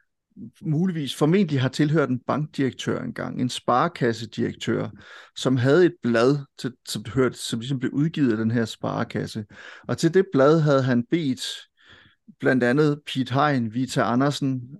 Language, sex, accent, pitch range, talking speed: Danish, male, native, 120-145 Hz, 145 wpm